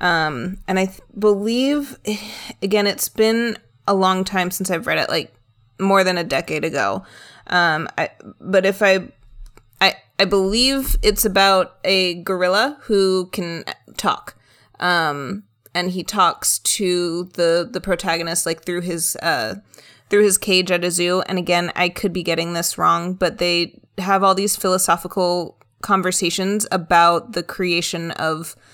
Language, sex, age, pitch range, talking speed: English, female, 20-39, 165-195 Hz, 150 wpm